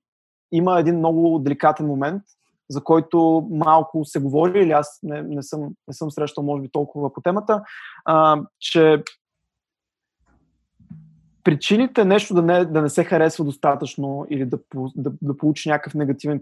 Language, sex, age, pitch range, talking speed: Bulgarian, male, 20-39, 145-170 Hz, 150 wpm